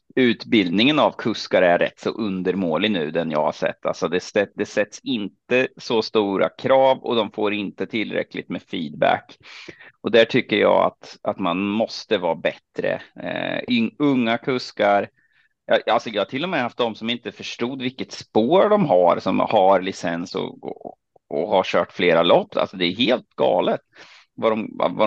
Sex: male